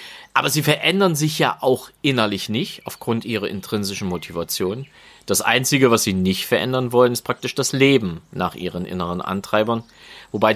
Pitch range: 100-140 Hz